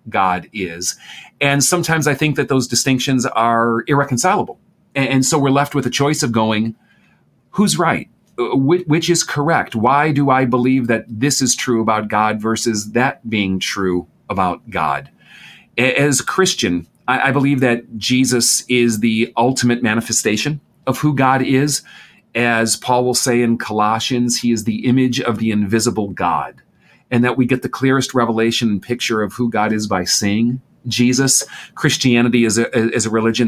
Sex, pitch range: male, 115-135 Hz